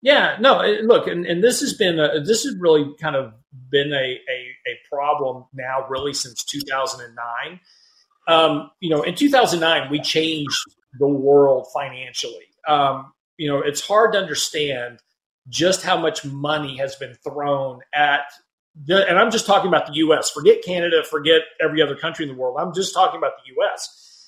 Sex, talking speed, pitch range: male, 175 wpm, 145-190 Hz